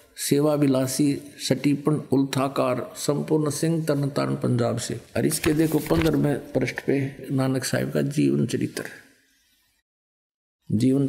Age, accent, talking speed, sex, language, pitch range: 50-69, native, 115 wpm, male, Hindi, 135-165 Hz